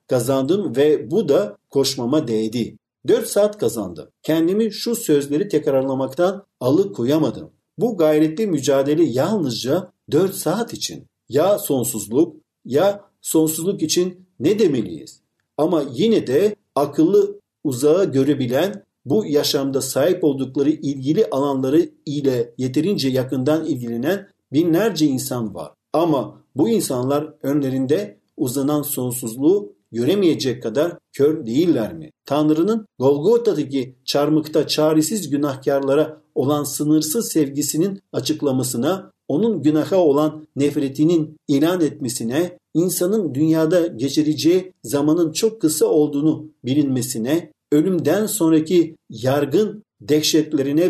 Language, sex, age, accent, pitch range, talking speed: Turkish, male, 50-69, native, 140-175 Hz, 100 wpm